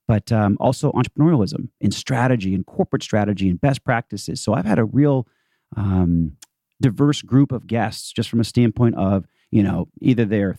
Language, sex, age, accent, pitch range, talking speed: English, male, 30-49, American, 100-130 Hz, 175 wpm